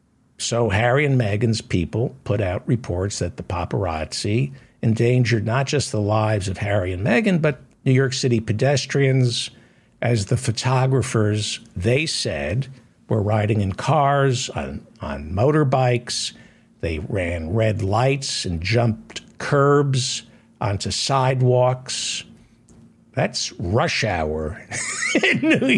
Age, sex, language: 60-79, male, English